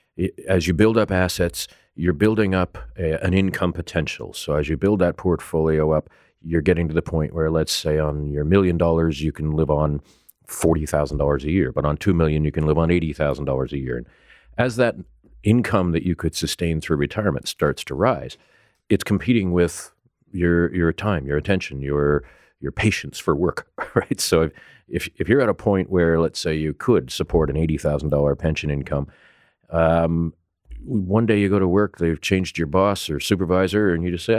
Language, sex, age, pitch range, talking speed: English, male, 40-59, 75-90 Hz, 195 wpm